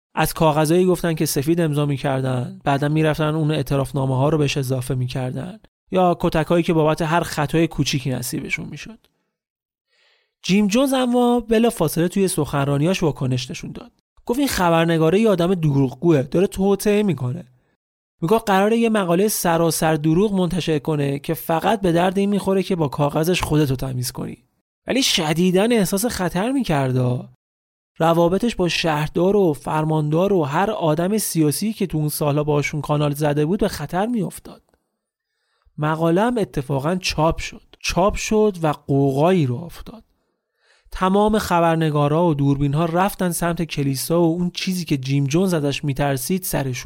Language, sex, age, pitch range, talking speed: Persian, male, 30-49, 145-185 Hz, 145 wpm